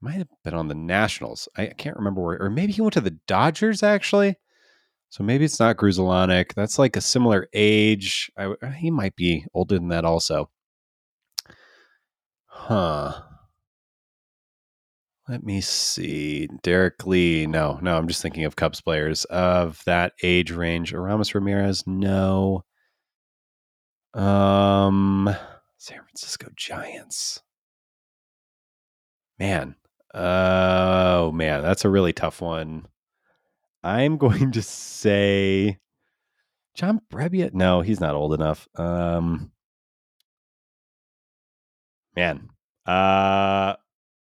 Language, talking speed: English, 115 wpm